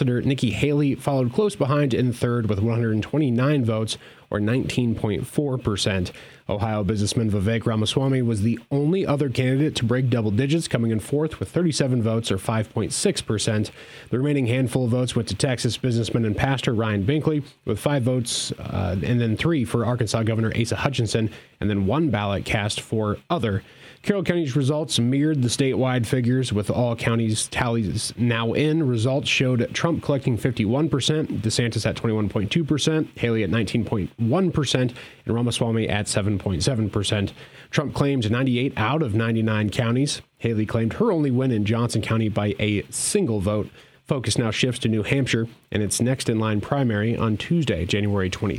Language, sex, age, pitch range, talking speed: English, male, 30-49, 110-135 Hz, 160 wpm